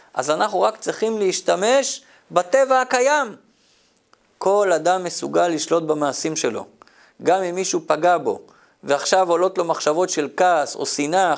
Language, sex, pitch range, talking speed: Hebrew, male, 175-235 Hz, 135 wpm